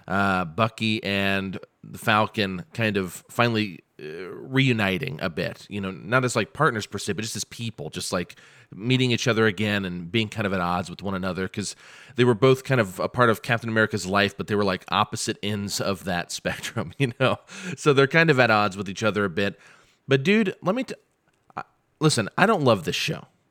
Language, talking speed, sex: English, 210 wpm, male